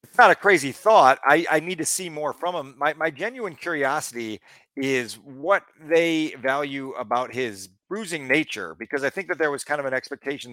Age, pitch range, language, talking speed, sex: 40-59, 130-170 Hz, English, 200 wpm, male